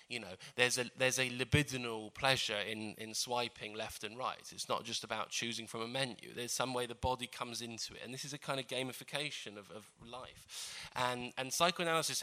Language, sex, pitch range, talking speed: Slovak, male, 110-135 Hz, 210 wpm